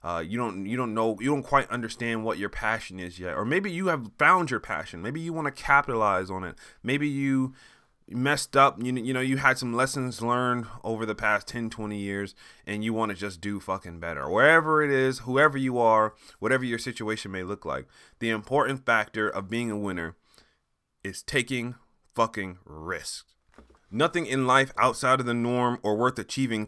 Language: English